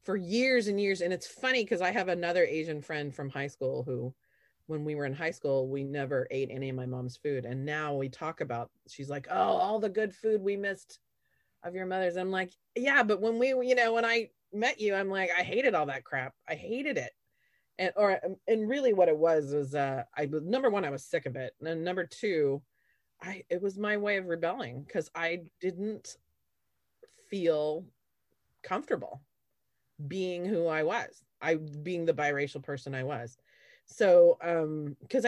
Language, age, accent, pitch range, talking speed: English, 30-49, American, 140-200 Hz, 195 wpm